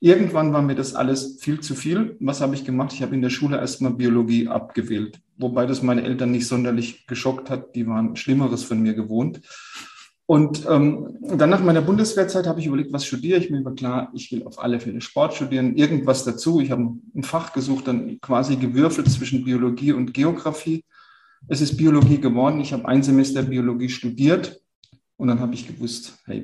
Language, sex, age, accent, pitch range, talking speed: German, male, 40-59, German, 125-150 Hz, 195 wpm